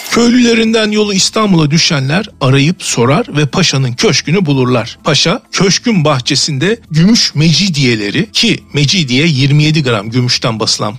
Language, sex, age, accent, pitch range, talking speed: Turkish, male, 50-69, native, 145-215 Hz, 115 wpm